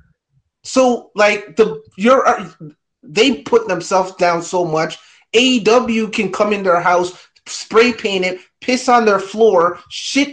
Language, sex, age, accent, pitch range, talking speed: English, male, 30-49, American, 190-255 Hz, 140 wpm